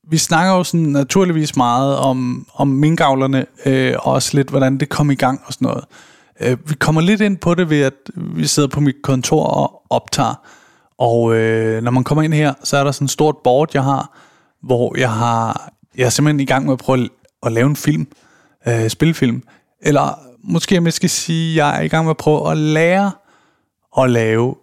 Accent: native